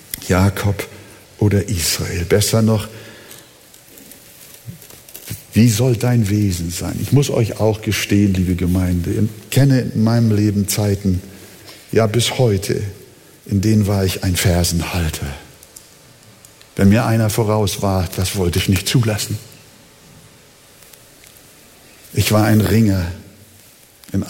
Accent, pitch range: German, 95-110 Hz